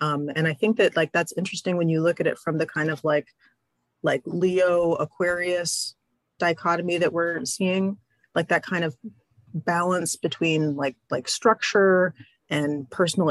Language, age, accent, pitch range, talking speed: English, 30-49, American, 155-180 Hz, 160 wpm